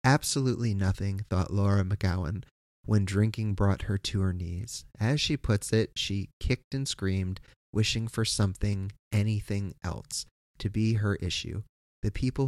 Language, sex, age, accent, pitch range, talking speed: English, male, 30-49, American, 95-115 Hz, 150 wpm